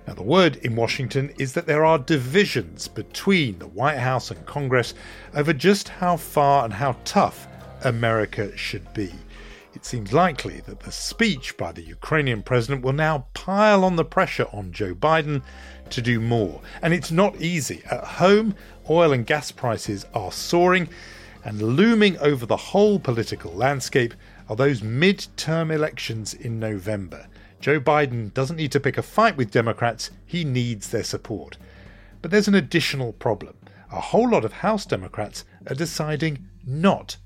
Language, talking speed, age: English, 165 wpm, 40-59